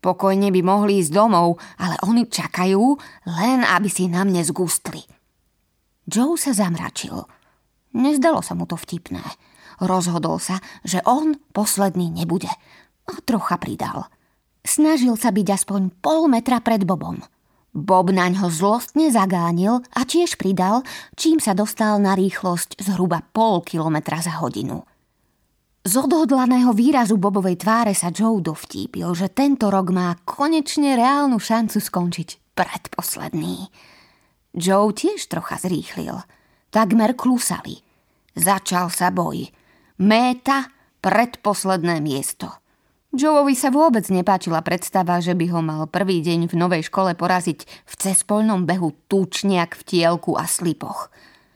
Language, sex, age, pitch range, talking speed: Slovak, female, 20-39, 175-235 Hz, 125 wpm